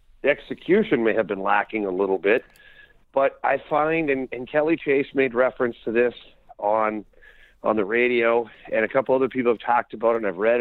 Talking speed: 190 wpm